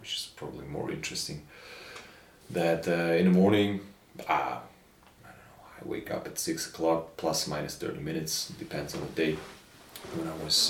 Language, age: Croatian, 30-49